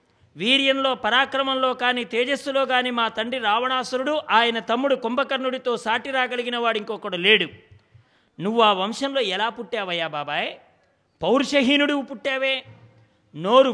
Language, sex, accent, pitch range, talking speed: English, male, Indian, 210-275 Hz, 125 wpm